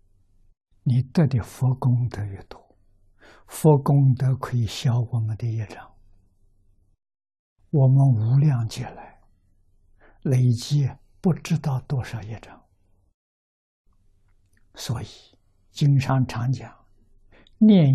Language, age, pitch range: Chinese, 60-79, 95-130 Hz